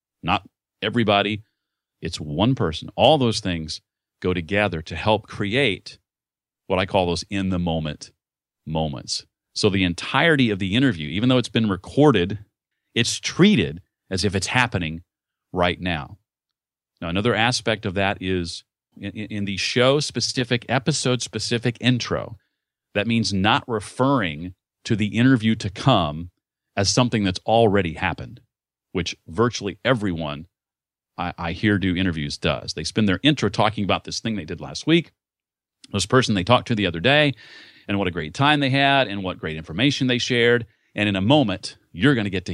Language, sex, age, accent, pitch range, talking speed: English, male, 40-59, American, 90-125 Hz, 170 wpm